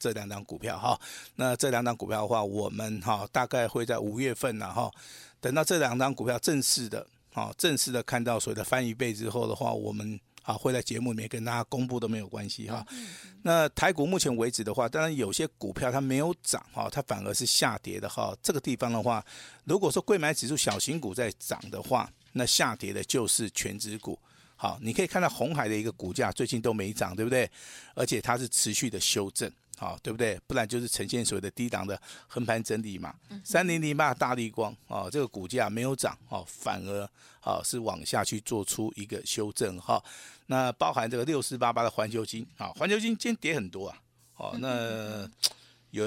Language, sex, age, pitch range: Chinese, male, 50-69, 110-130 Hz